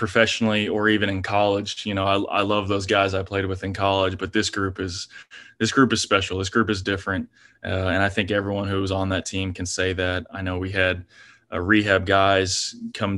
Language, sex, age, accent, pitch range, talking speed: English, male, 20-39, American, 90-100 Hz, 230 wpm